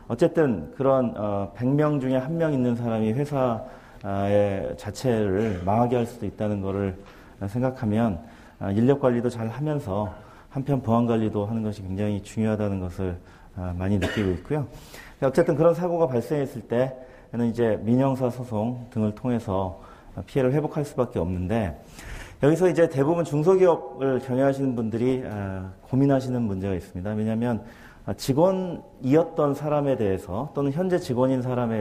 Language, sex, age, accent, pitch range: Korean, male, 40-59, native, 100-135 Hz